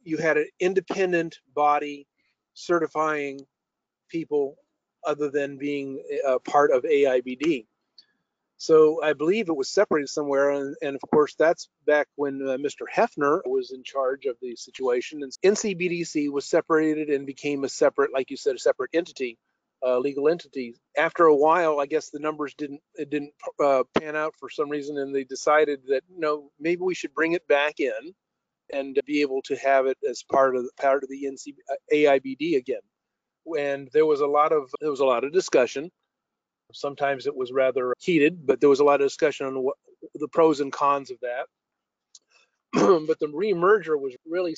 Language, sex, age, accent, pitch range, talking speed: English, male, 40-59, American, 140-175 Hz, 180 wpm